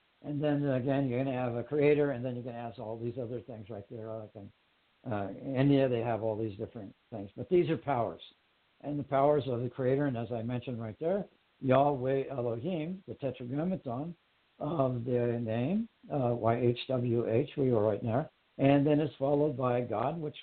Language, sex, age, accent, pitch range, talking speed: English, male, 60-79, American, 115-140 Hz, 195 wpm